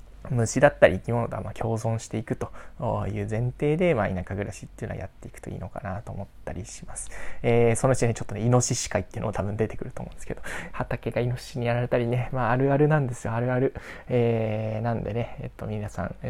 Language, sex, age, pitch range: Japanese, male, 20-39, 110-130 Hz